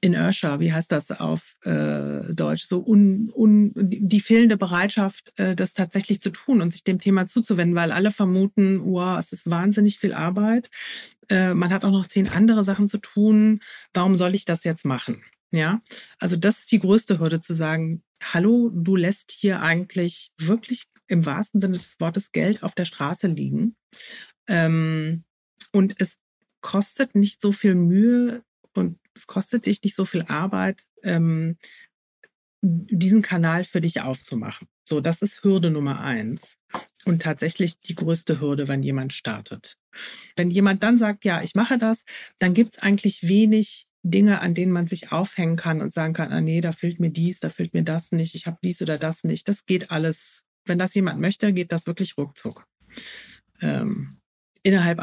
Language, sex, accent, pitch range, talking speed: German, female, German, 165-205 Hz, 180 wpm